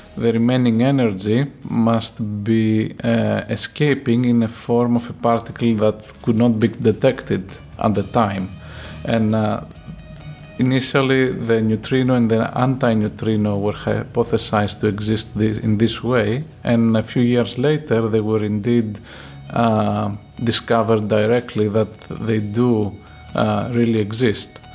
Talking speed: 135 wpm